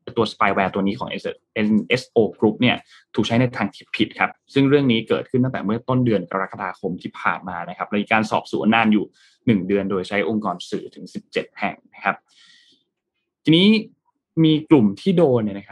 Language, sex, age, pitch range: Thai, male, 20-39, 100-115 Hz